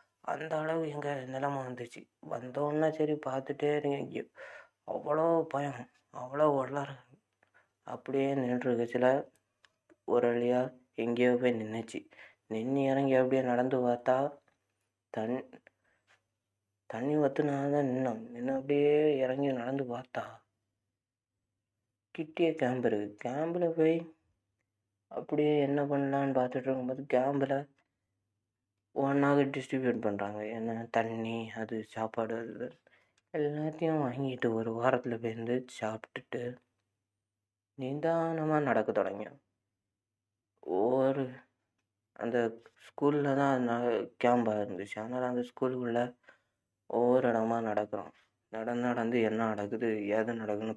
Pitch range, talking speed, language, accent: 110-140 Hz, 90 wpm, Tamil, native